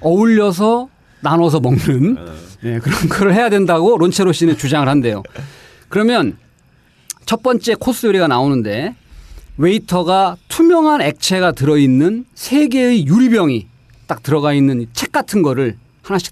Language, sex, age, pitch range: Korean, male, 40-59, 130-195 Hz